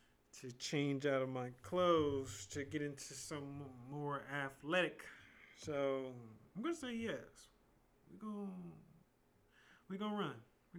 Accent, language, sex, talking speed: American, English, male, 135 wpm